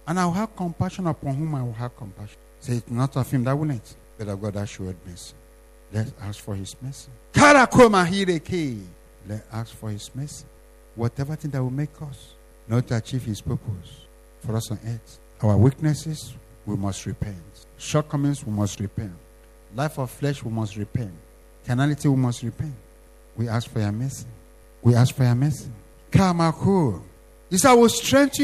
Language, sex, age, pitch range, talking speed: English, male, 60-79, 110-155 Hz, 175 wpm